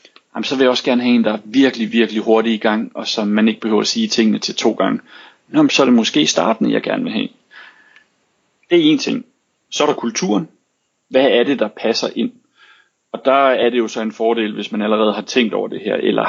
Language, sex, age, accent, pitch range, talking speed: Danish, male, 40-59, native, 110-145 Hz, 250 wpm